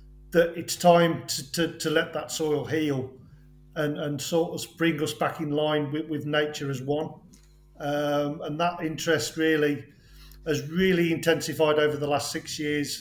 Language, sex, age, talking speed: English, male, 40-59, 160 wpm